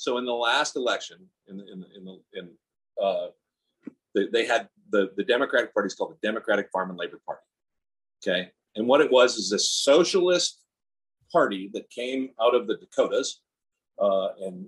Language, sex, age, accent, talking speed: English, male, 40-59, American, 175 wpm